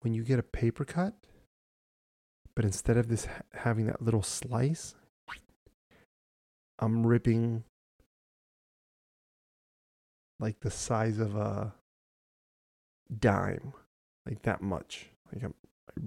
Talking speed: 105 wpm